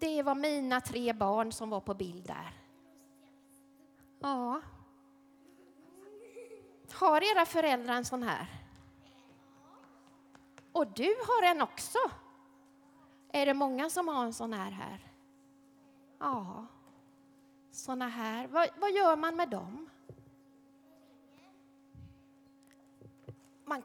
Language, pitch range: Swedish, 230-290 Hz